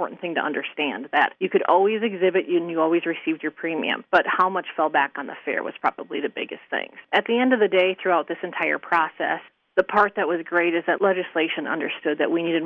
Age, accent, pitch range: 30-49, American, 160-195 Hz